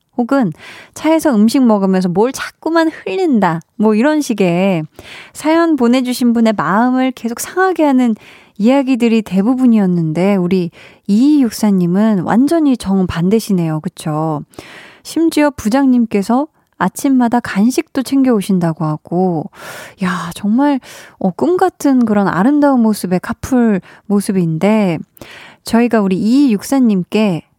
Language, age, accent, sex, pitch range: Korean, 20-39, native, female, 185-260 Hz